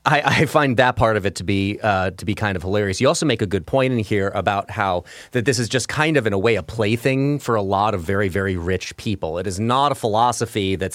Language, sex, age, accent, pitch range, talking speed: English, male, 30-49, American, 100-135 Hz, 275 wpm